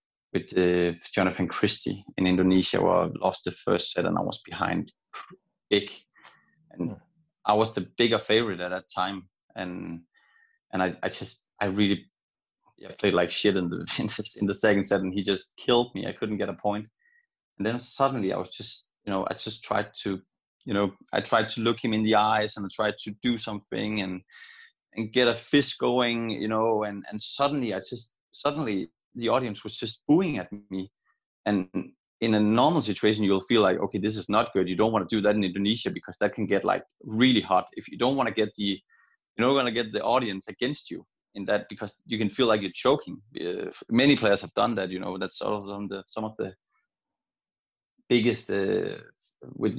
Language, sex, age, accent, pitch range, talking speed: English, male, 20-39, Danish, 100-115 Hz, 205 wpm